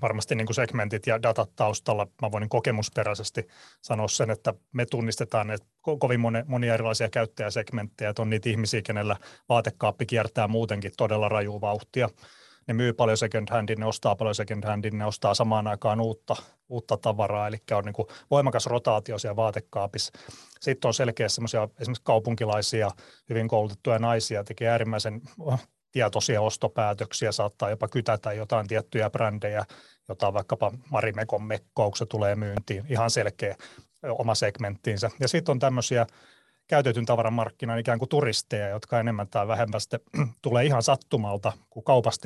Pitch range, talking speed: 105-120 Hz, 145 wpm